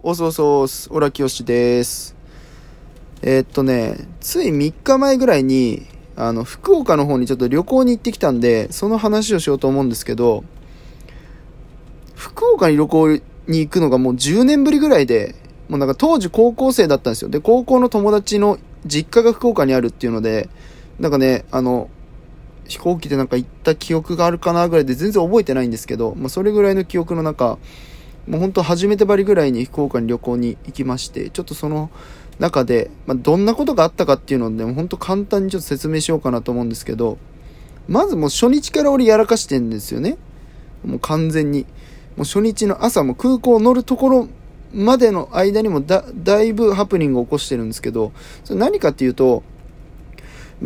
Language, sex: Japanese, male